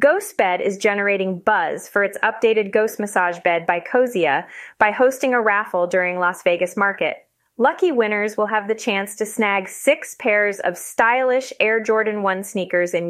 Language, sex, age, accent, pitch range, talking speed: English, female, 30-49, American, 195-245 Hz, 170 wpm